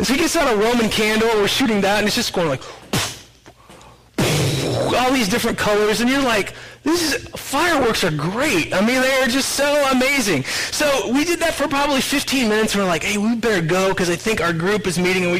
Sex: male